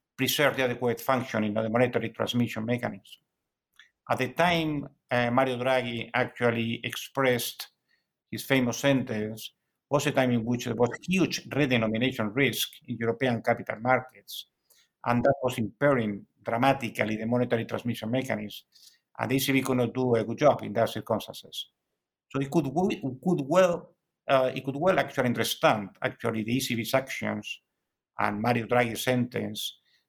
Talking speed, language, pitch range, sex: 150 wpm, English, 115-135 Hz, male